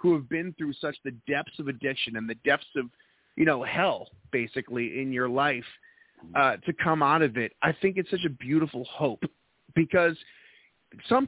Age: 30-49